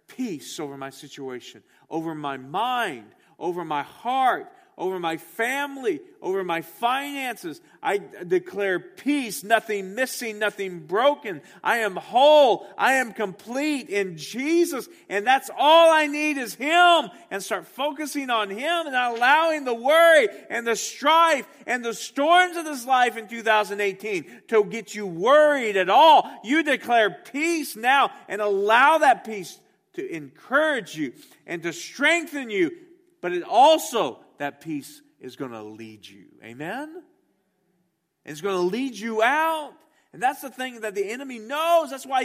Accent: American